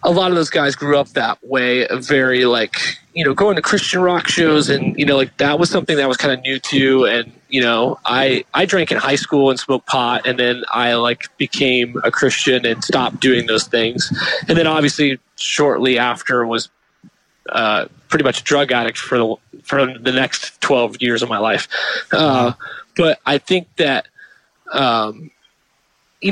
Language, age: English, 30-49